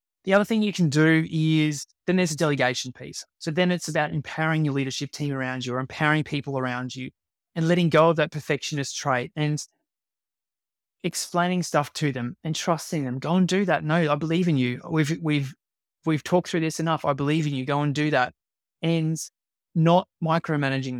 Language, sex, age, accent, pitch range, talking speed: English, male, 20-39, Australian, 135-160 Hz, 195 wpm